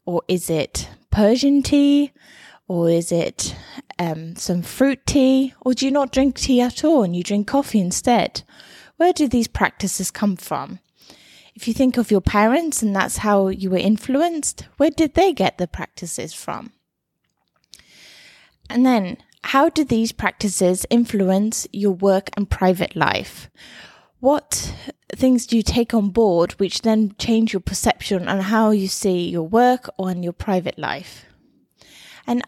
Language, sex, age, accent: English, female, 20-39, British